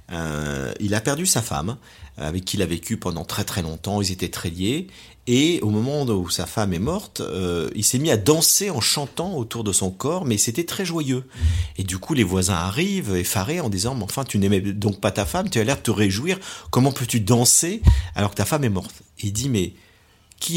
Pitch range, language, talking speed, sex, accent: 95-125 Hz, French, 230 wpm, male, French